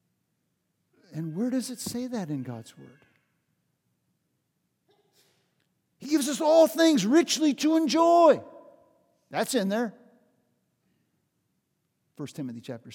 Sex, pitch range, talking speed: male, 185-270 Hz, 105 wpm